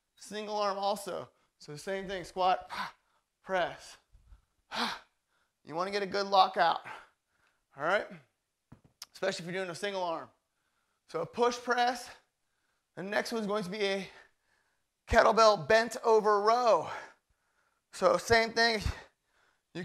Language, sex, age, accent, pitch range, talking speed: English, male, 20-39, American, 190-235 Hz, 125 wpm